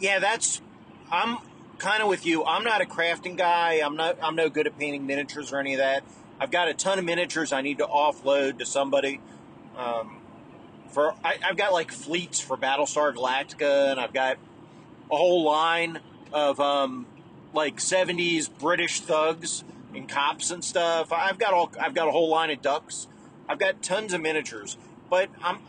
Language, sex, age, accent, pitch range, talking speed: English, male, 40-59, American, 145-175 Hz, 185 wpm